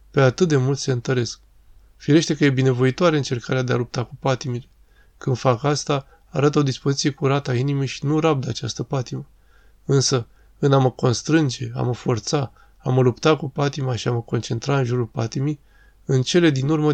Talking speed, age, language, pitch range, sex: 190 wpm, 20-39, Romanian, 125-145 Hz, male